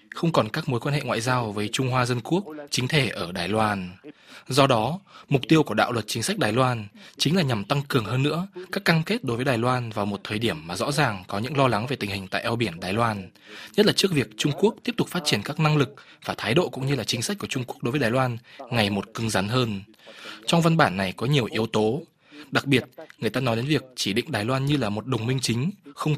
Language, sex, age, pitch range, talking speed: Vietnamese, male, 20-39, 115-150 Hz, 275 wpm